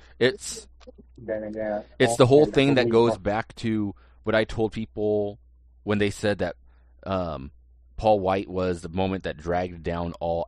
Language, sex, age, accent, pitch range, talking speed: English, male, 30-49, American, 70-105 Hz, 155 wpm